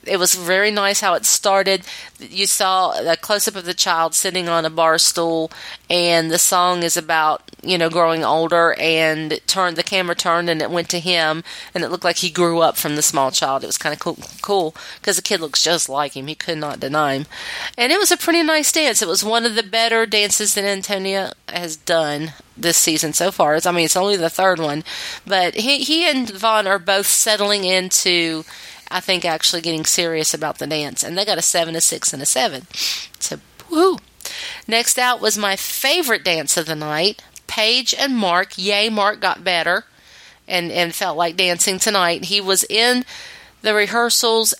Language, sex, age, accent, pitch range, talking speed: English, female, 30-49, American, 165-210 Hz, 205 wpm